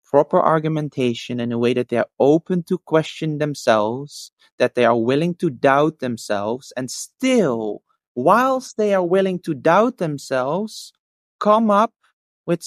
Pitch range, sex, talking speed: 125-180 Hz, male, 145 wpm